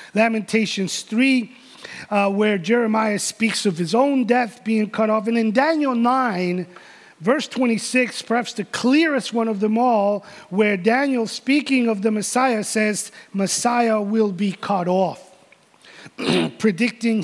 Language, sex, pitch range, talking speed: English, male, 210-255 Hz, 130 wpm